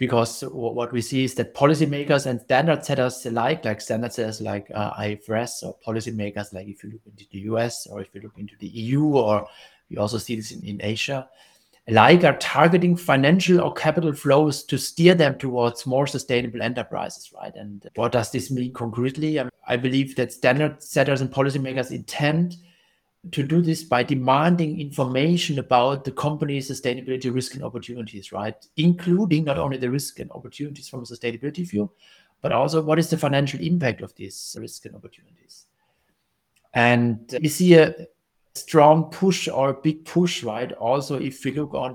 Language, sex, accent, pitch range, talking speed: English, male, German, 115-145 Hz, 180 wpm